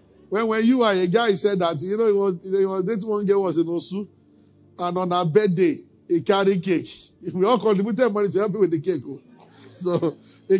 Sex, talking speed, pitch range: male, 225 wpm, 180-250 Hz